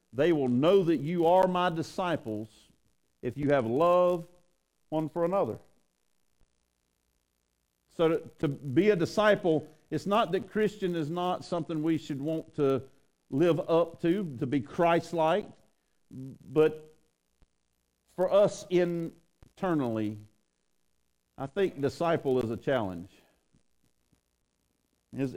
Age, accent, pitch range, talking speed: 50-69, American, 110-165 Hz, 115 wpm